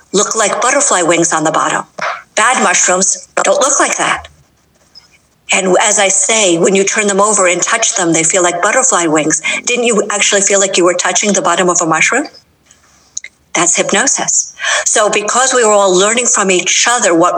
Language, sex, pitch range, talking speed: English, female, 175-210 Hz, 190 wpm